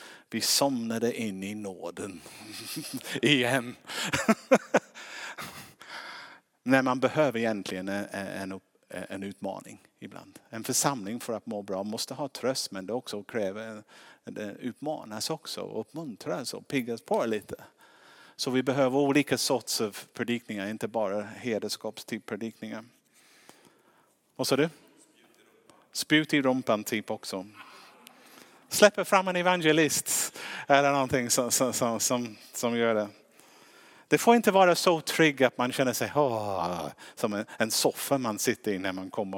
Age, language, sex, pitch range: 50-69, Swedish, male, 105-150 Hz